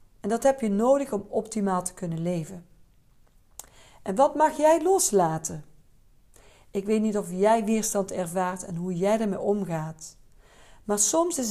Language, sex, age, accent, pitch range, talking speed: Dutch, female, 50-69, Dutch, 185-245 Hz, 155 wpm